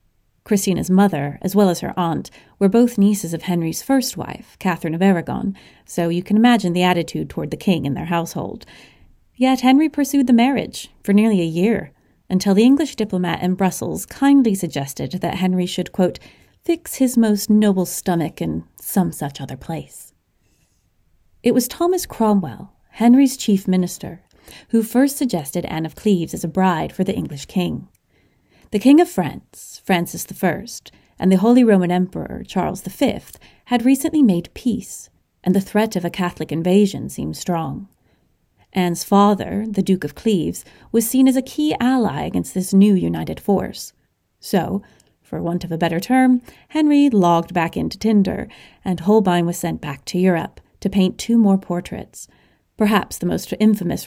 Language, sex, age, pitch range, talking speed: English, female, 30-49, 170-215 Hz, 170 wpm